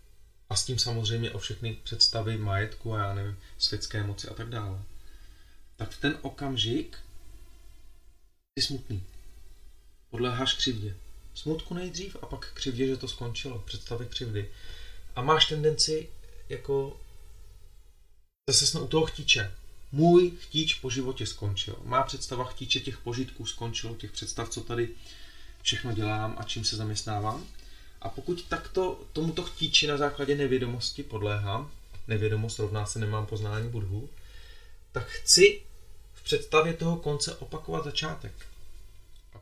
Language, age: Czech, 30-49